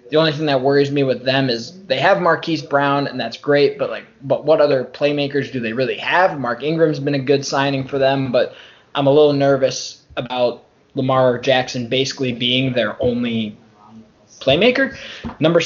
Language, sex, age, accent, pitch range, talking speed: English, male, 20-39, American, 130-160 Hz, 180 wpm